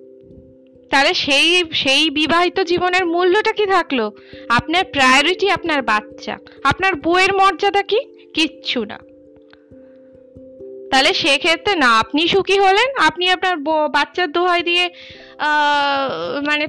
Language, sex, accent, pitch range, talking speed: Bengali, female, native, 240-360 Hz, 95 wpm